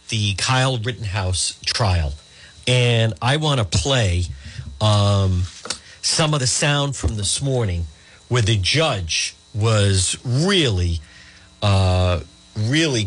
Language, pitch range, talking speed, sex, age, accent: English, 95-130 Hz, 110 wpm, male, 50-69, American